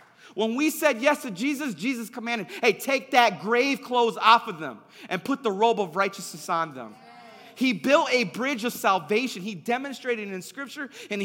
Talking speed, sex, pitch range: 190 wpm, male, 195-250 Hz